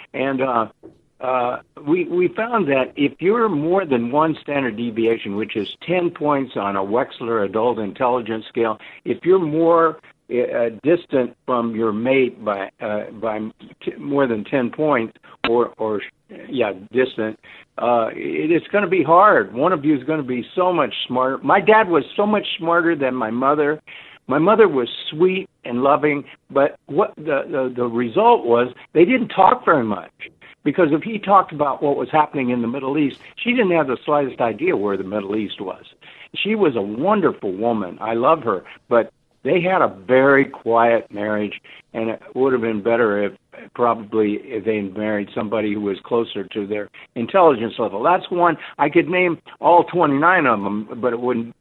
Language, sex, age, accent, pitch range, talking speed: English, male, 60-79, American, 115-165 Hz, 185 wpm